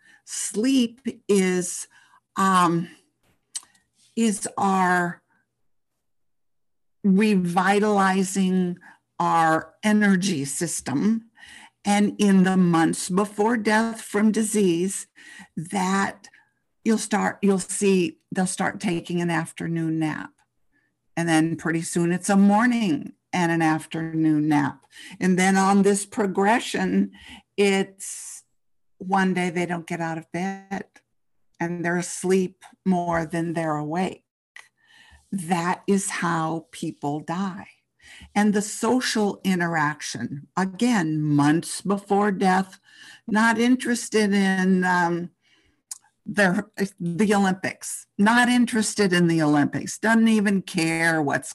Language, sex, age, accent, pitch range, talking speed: English, female, 50-69, American, 165-210 Hz, 105 wpm